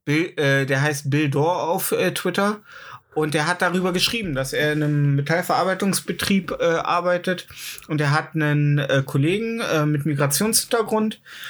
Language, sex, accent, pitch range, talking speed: German, male, German, 150-185 Hz, 155 wpm